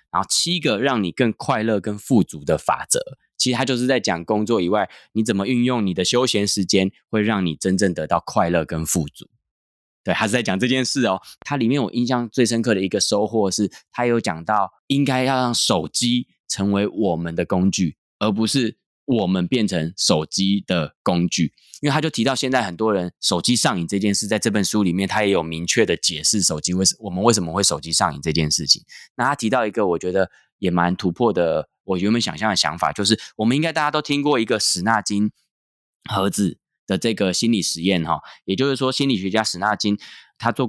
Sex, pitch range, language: male, 90-115 Hz, Chinese